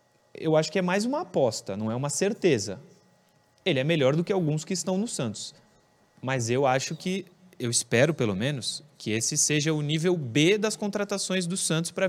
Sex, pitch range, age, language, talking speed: male, 120-175 Hz, 20-39, Portuguese, 200 wpm